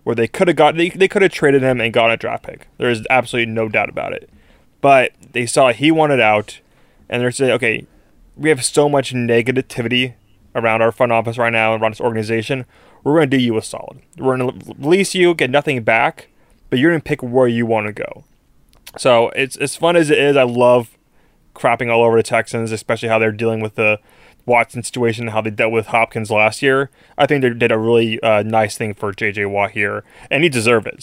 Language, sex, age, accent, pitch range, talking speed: English, male, 20-39, American, 115-135 Hz, 220 wpm